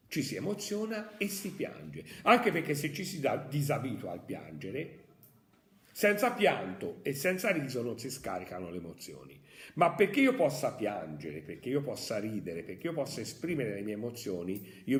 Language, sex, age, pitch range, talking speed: Italian, male, 50-69, 110-170 Hz, 165 wpm